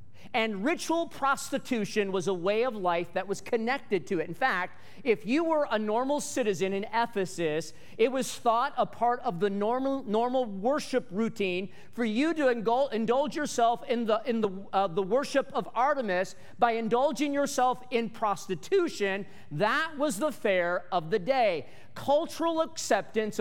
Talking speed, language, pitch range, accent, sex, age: 160 wpm, English, 145-240 Hz, American, male, 40-59